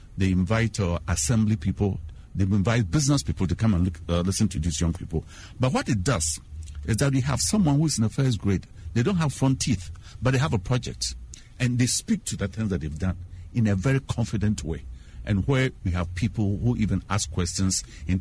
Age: 50-69